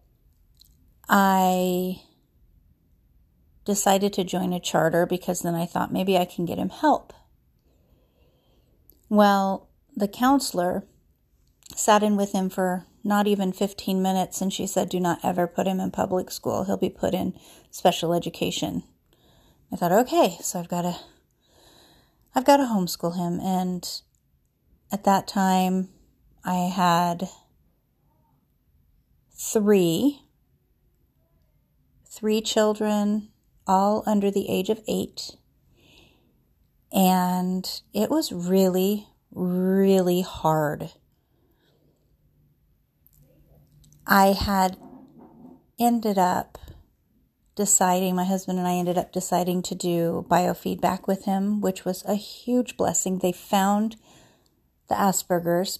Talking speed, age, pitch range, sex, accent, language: 110 wpm, 40-59, 180-205 Hz, female, American, English